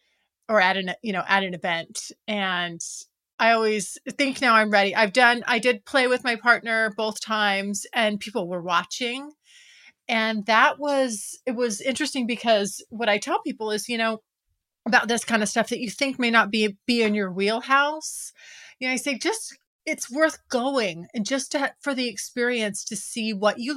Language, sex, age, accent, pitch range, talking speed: English, female, 30-49, American, 205-250 Hz, 190 wpm